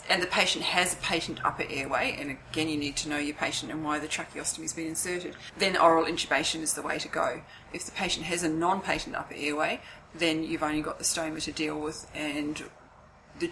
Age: 30-49